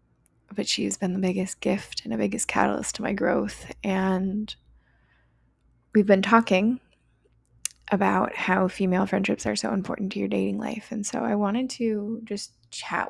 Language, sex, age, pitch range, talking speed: English, female, 20-39, 190-220 Hz, 160 wpm